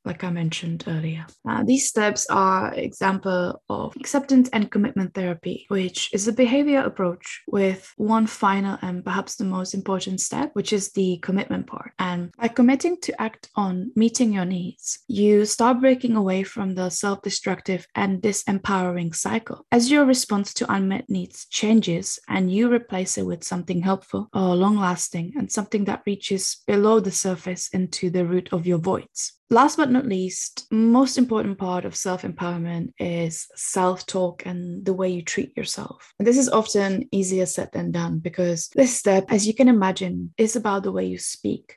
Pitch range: 180-225 Hz